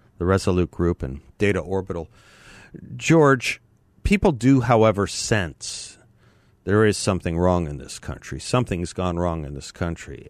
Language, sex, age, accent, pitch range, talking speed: English, male, 50-69, American, 90-115 Hz, 140 wpm